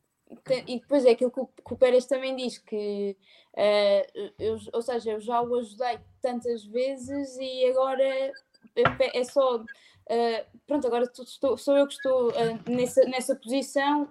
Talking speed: 155 wpm